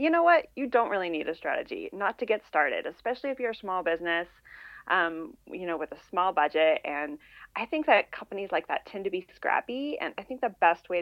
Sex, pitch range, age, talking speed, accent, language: female, 160-235 Hz, 30-49, 235 wpm, American, English